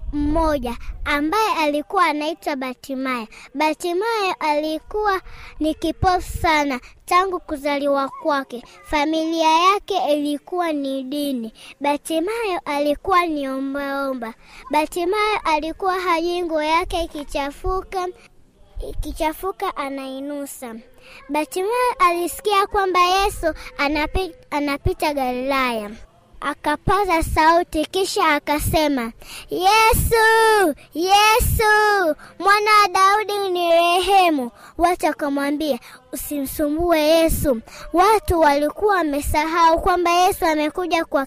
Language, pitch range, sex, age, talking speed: Swahili, 295-405 Hz, male, 20-39, 80 wpm